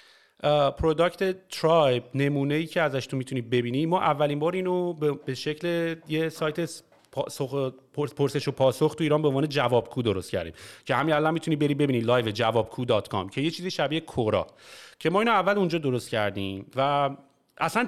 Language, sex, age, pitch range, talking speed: Persian, male, 30-49, 130-165 Hz, 160 wpm